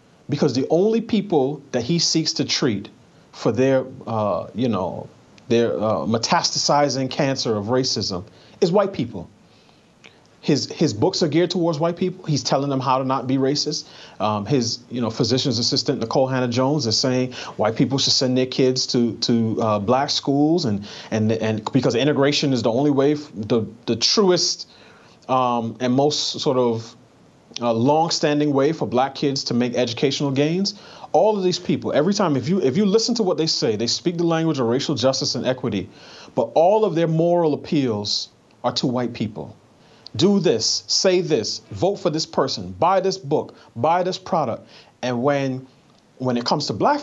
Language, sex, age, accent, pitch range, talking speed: English, male, 30-49, American, 120-160 Hz, 185 wpm